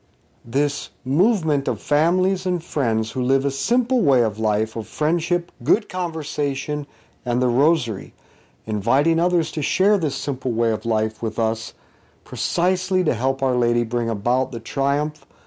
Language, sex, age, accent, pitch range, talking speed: English, male, 50-69, American, 120-160 Hz, 155 wpm